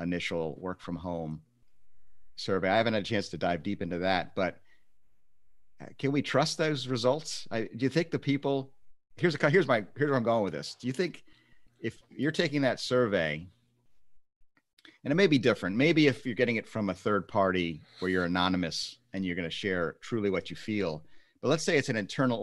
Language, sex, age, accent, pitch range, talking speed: English, male, 40-59, American, 90-115 Hz, 200 wpm